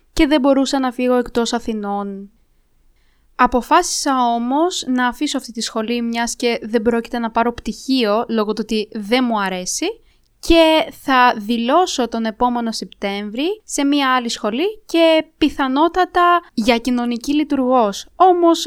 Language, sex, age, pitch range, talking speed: Greek, female, 20-39, 230-285 Hz, 140 wpm